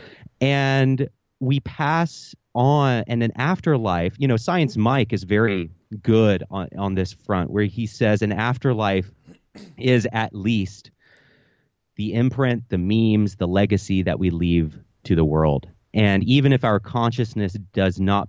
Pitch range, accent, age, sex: 95-125 Hz, American, 30-49, male